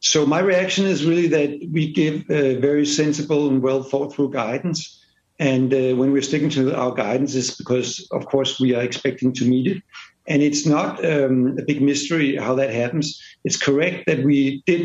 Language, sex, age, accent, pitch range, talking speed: English, male, 60-79, Danish, 130-150 Hz, 200 wpm